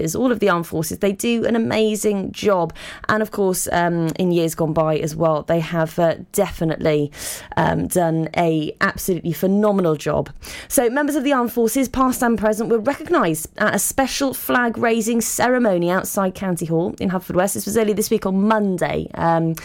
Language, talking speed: English, 180 wpm